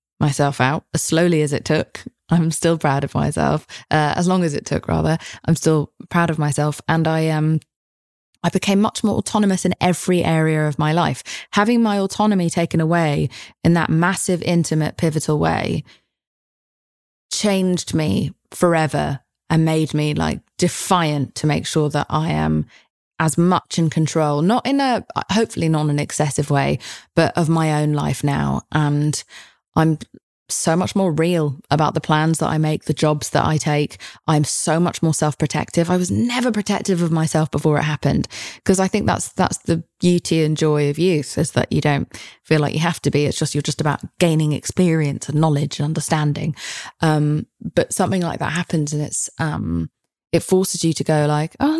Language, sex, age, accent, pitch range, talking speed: English, female, 20-39, British, 150-175 Hz, 185 wpm